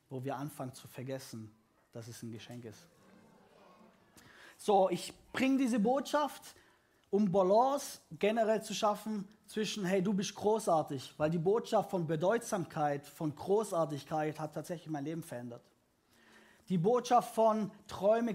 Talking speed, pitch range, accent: 135 wpm, 150-210 Hz, German